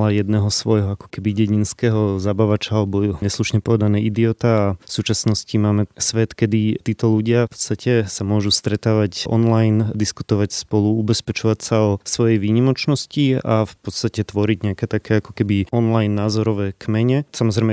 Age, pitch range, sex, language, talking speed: 30-49, 105-115 Hz, male, Slovak, 145 wpm